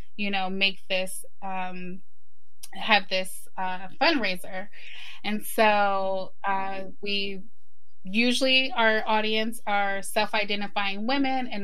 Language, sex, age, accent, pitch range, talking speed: English, female, 20-39, American, 200-235 Hz, 110 wpm